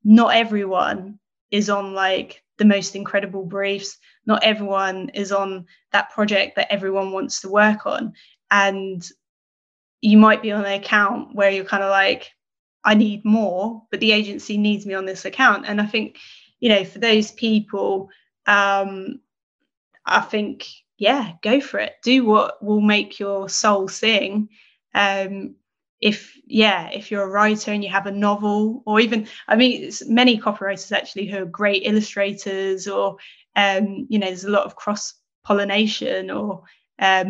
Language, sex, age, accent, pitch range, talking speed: English, female, 20-39, British, 195-215 Hz, 160 wpm